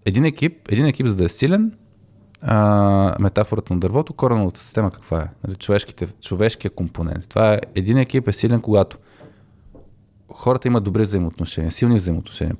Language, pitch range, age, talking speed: Bulgarian, 95-115 Hz, 20-39, 150 wpm